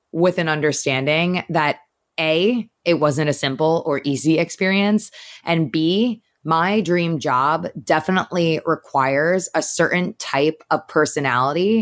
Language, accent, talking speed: English, American, 120 wpm